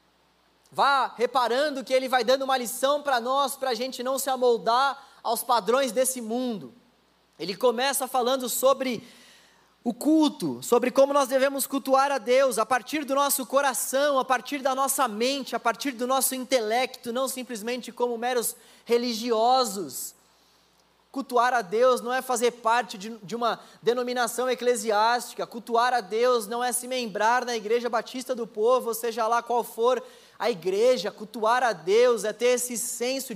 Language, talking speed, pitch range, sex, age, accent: Portuguese, 160 wpm, 235-260 Hz, male, 20-39, Brazilian